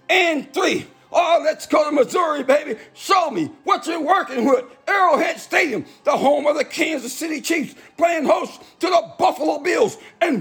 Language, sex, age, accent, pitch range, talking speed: English, male, 50-69, American, 305-350 Hz, 175 wpm